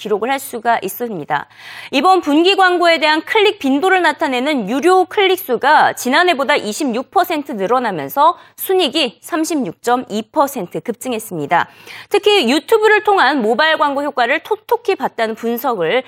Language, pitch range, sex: Korean, 245-385 Hz, female